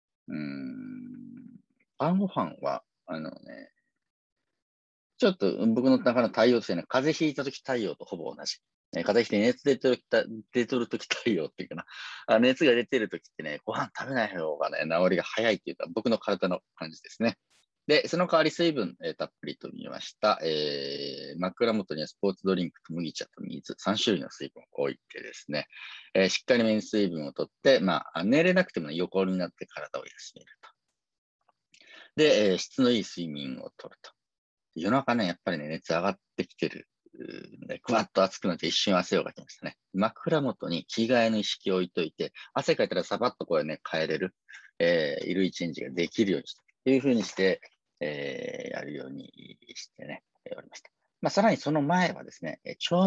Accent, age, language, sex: native, 40-59, Japanese, male